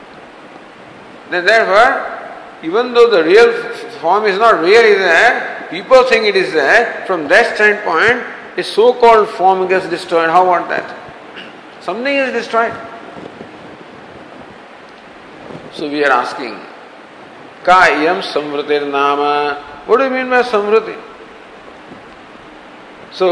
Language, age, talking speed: English, 50-69, 115 wpm